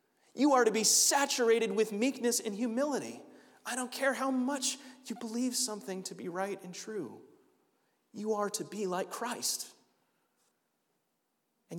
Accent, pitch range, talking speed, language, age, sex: American, 130-220 Hz, 150 wpm, English, 30-49, male